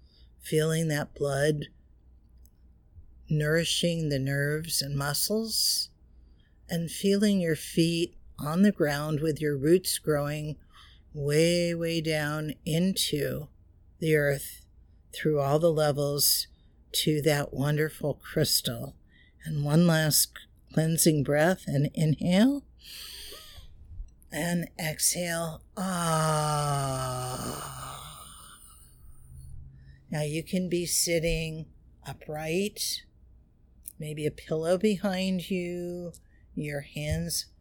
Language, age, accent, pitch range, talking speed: English, 50-69, American, 140-170 Hz, 90 wpm